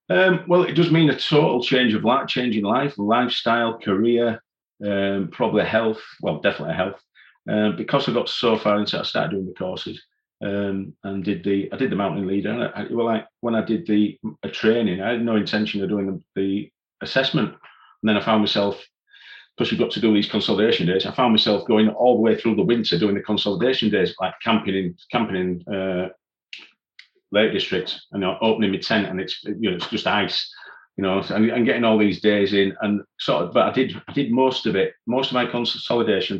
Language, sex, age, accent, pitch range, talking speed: English, male, 40-59, British, 100-115 Hz, 215 wpm